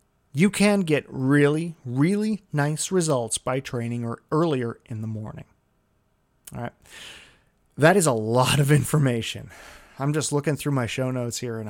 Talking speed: 160 wpm